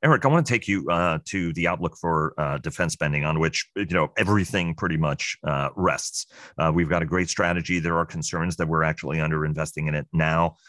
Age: 40-59